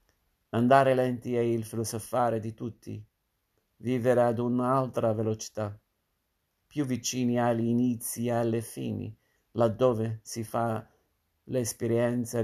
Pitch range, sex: 110-120 Hz, male